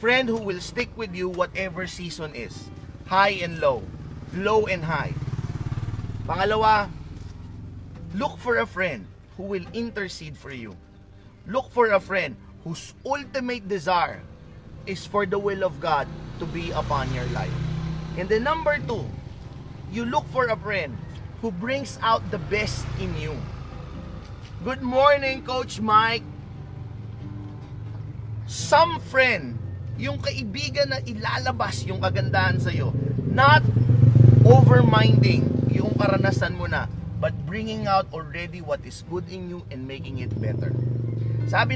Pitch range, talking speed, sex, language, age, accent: 115-185 Hz, 130 wpm, male, Filipino, 30-49, native